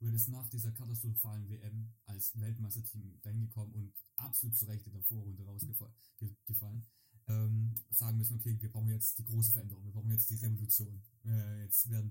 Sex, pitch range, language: male, 110-115 Hz, German